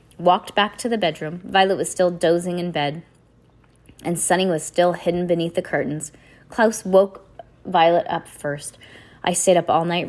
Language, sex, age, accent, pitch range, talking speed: English, female, 30-49, American, 160-200 Hz, 170 wpm